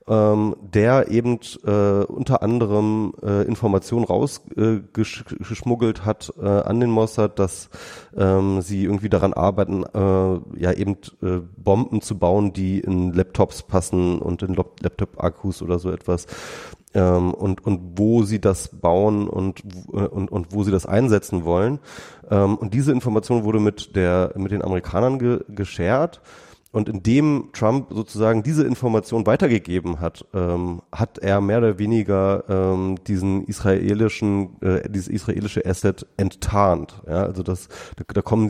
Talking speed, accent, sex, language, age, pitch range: 140 wpm, German, male, German, 30-49, 95-110 Hz